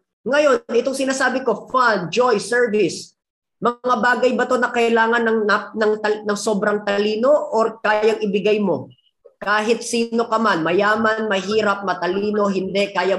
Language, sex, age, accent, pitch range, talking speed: English, female, 20-39, Filipino, 180-235 Hz, 145 wpm